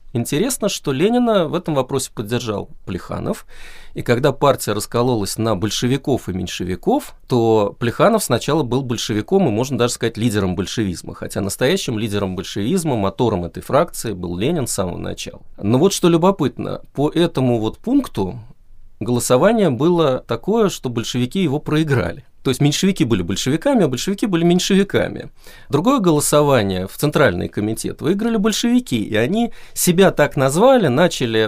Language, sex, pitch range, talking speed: Russian, male, 105-165 Hz, 145 wpm